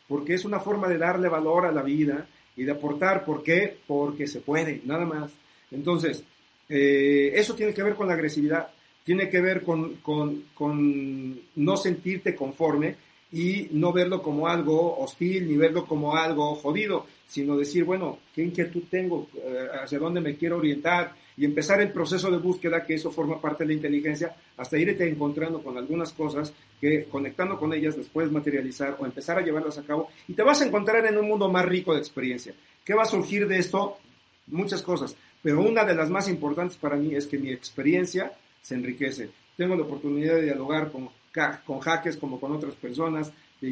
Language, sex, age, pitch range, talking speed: Spanish, male, 50-69, 145-175 Hz, 190 wpm